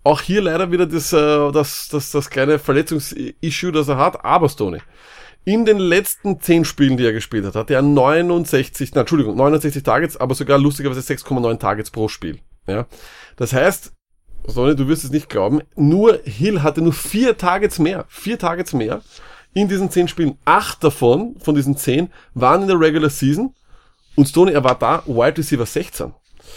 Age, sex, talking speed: 30-49, male, 180 wpm